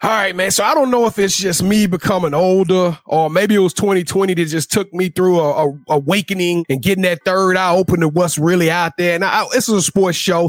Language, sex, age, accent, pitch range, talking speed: English, male, 30-49, American, 175-210 Hz, 245 wpm